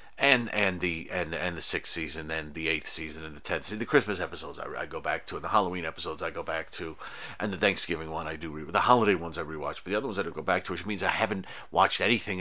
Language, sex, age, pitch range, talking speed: English, male, 40-59, 90-110 Hz, 285 wpm